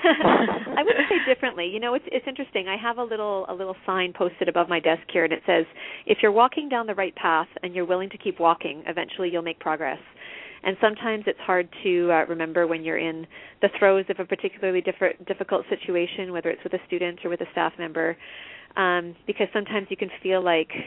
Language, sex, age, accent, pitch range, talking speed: English, female, 30-49, American, 170-200 Hz, 220 wpm